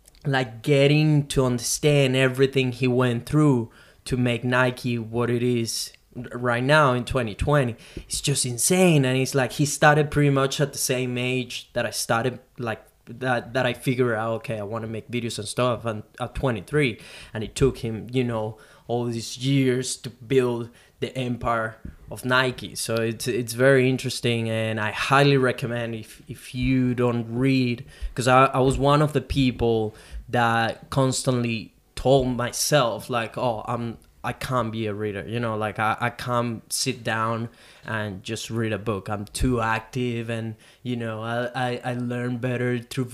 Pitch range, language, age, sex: 115-130 Hz, English, 20-39, male